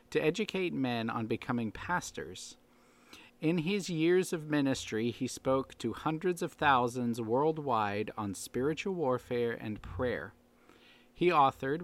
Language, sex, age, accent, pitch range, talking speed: English, male, 40-59, American, 115-145 Hz, 120 wpm